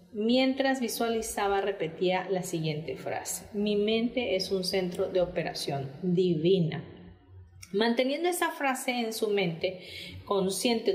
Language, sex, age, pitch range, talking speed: Spanish, female, 40-59, 185-245 Hz, 115 wpm